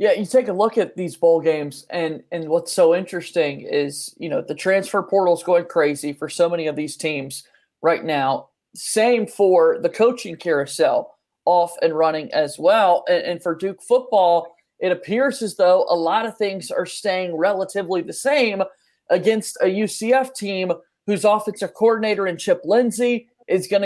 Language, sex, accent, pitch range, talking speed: English, male, American, 170-220 Hz, 180 wpm